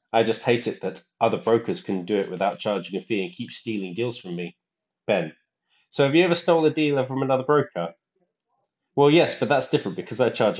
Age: 30-49